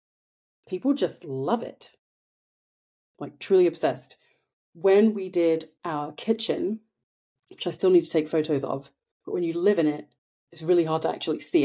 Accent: British